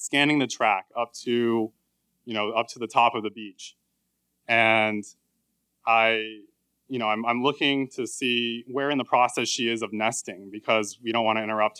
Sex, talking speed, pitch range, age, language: male, 190 wpm, 110-130 Hz, 20-39, English